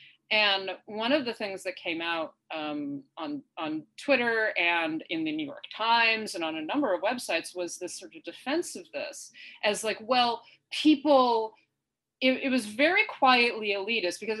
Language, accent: English, American